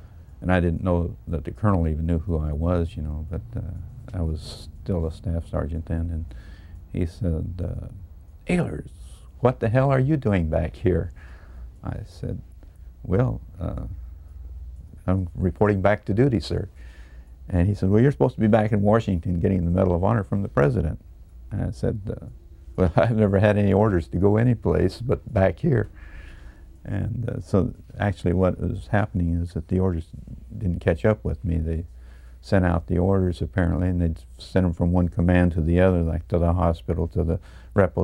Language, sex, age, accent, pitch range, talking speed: English, male, 50-69, American, 80-95 Hz, 190 wpm